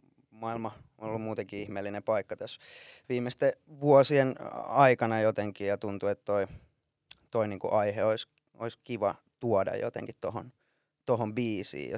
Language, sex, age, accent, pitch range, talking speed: Finnish, male, 20-39, native, 105-120 Hz, 140 wpm